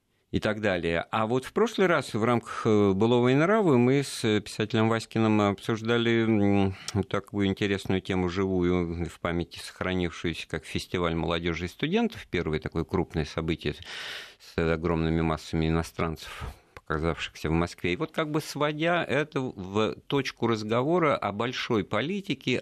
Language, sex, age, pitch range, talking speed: Russian, male, 50-69, 85-110 Hz, 140 wpm